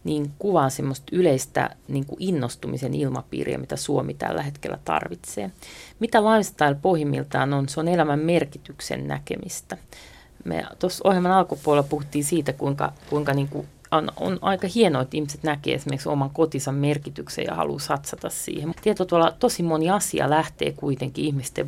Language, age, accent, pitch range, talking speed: Finnish, 40-59, native, 135-170 Hz, 145 wpm